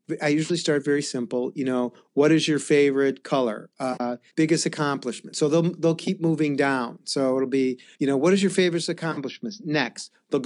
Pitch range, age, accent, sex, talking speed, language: 135-165 Hz, 40-59, American, male, 190 wpm, English